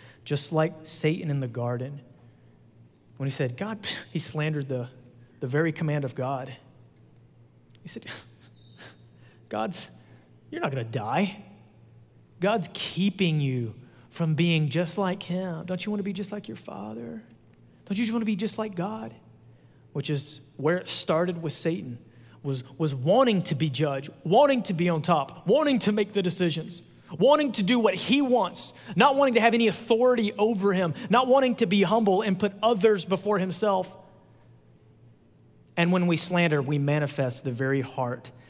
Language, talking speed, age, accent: English, 170 wpm, 30-49, American